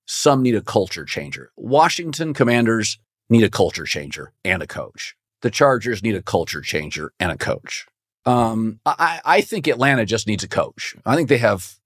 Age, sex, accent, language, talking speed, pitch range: 40-59, male, American, English, 180 wpm, 110-135 Hz